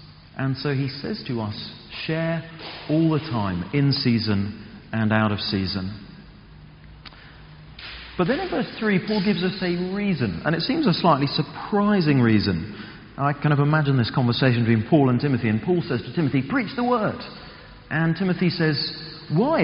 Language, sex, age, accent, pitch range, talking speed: English, male, 40-59, British, 110-160 Hz, 170 wpm